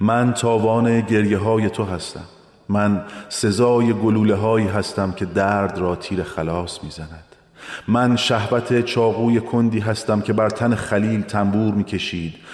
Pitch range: 95-115 Hz